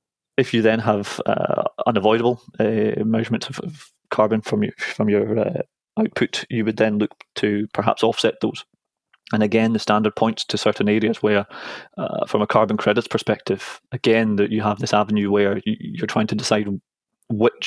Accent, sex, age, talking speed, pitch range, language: British, male, 20-39, 175 wpm, 105-115 Hz, English